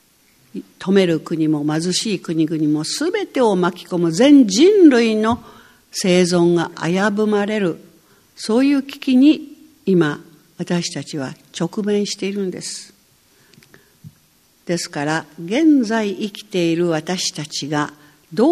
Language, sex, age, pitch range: Japanese, female, 60-79, 170-230 Hz